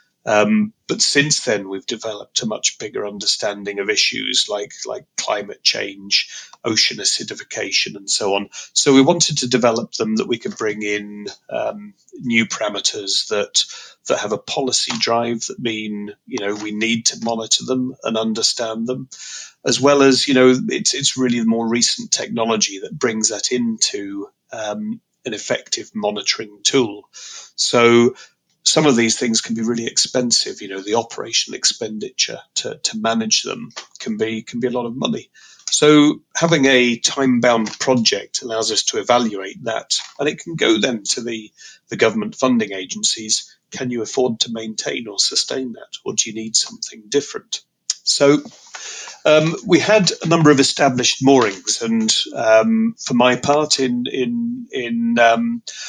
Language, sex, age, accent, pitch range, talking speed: English, male, 30-49, British, 110-145 Hz, 165 wpm